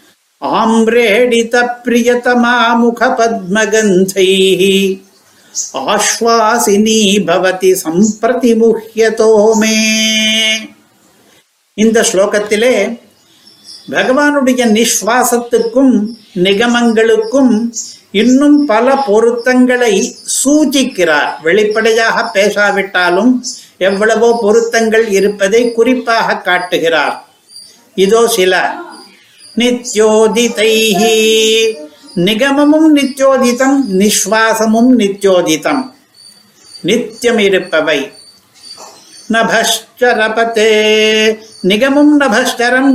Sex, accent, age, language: male, native, 60-79, Tamil